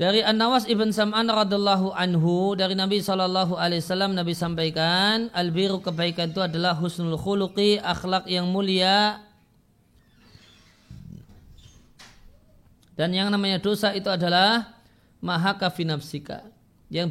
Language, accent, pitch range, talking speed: Indonesian, native, 160-195 Hz, 100 wpm